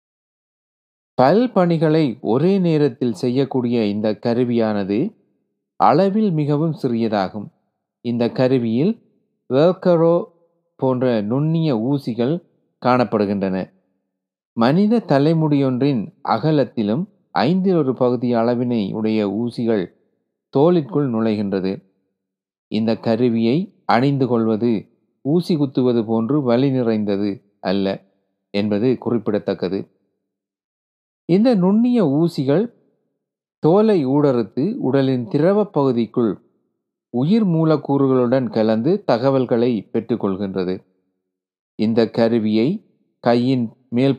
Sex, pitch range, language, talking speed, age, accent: male, 105-155 Hz, Tamil, 80 wpm, 30-49, native